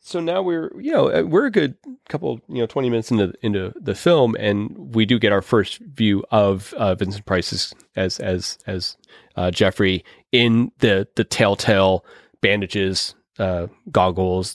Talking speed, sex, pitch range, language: 165 wpm, male, 100-130 Hz, English